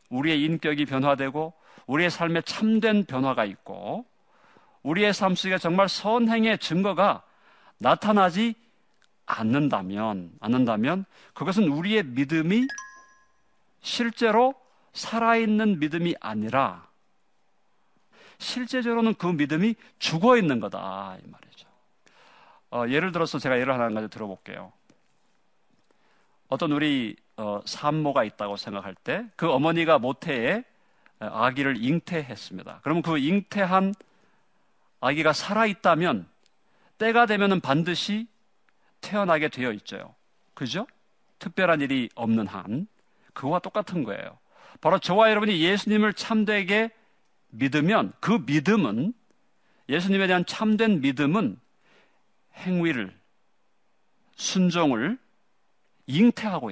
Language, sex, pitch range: Korean, male, 140-215 Hz